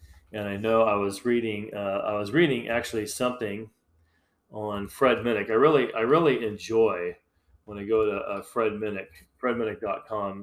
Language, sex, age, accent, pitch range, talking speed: English, male, 40-59, American, 100-115 Hz, 160 wpm